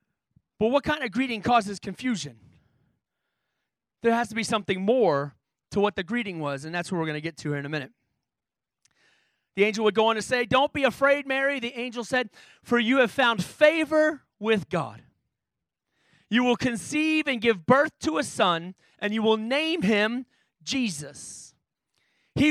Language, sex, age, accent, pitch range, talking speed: English, male, 30-49, American, 195-265 Hz, 180 wpm